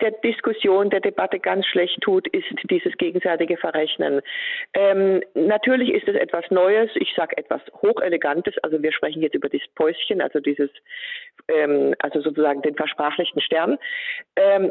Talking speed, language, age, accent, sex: 150 wpm, German, 40-59, German, female